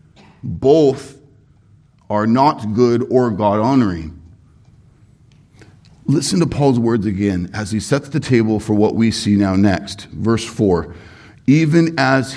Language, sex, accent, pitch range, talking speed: English, male, American, 105-140 Hz, 130 wpm